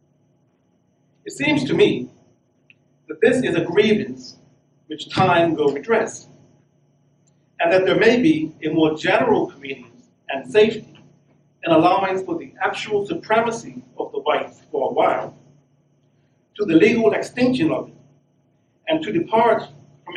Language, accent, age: English, American, 50-69